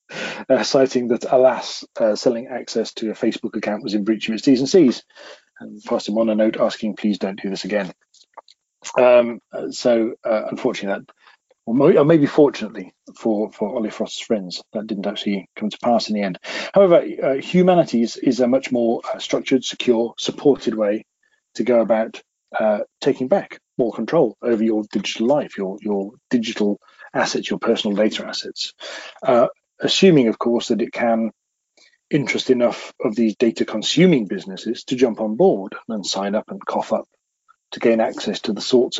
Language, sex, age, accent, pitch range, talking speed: English, male, 40-59, British, 105-125 Hz, 175 wpm